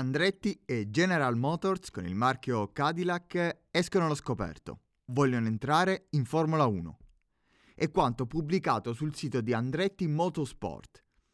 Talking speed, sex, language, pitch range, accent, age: 125 wpm, male, Italian, 130-170 Hz, native, 30-49